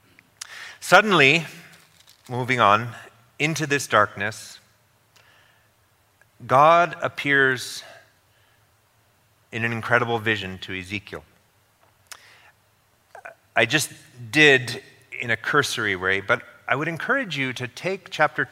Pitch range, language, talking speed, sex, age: 100-130 Hz, English, 95 wpm, male, 30-49